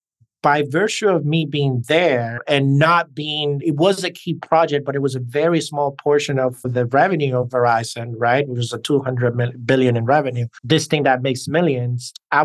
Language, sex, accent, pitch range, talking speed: English, male, American, 135-165 Hz, 200 wpm